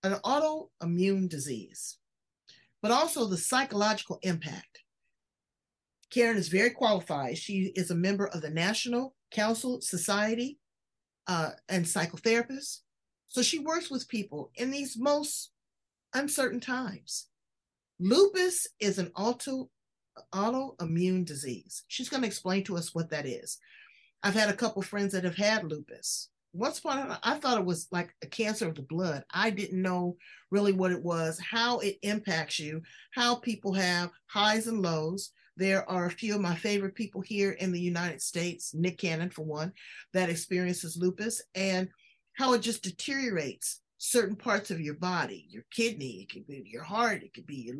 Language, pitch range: English, 180-235 Hz